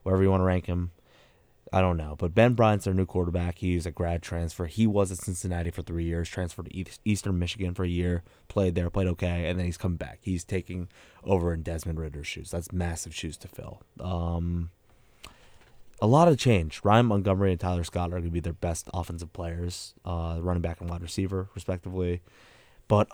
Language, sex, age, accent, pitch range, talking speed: English, male, 20-39, American, 85-100 Hz, 205 wpm